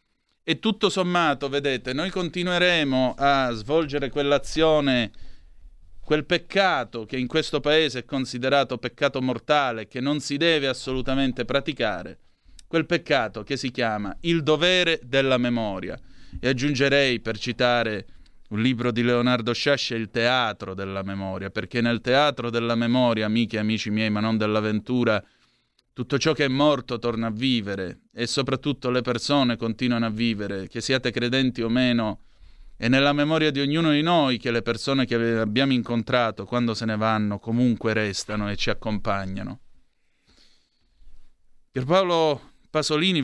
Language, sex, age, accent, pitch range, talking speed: Italian, male, 30-49, native, 110-140 Hz, 145 wpm